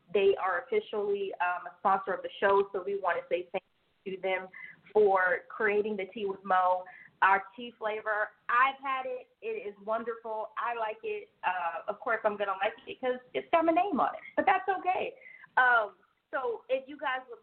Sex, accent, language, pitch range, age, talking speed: female, American, English, 205-265 Hz, 30-49, 205 wpm